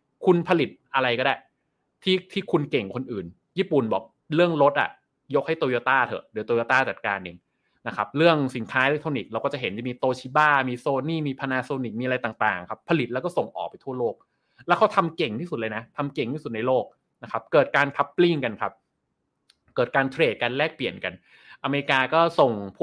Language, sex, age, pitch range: Thai, male, 20-39, 115-155 Hz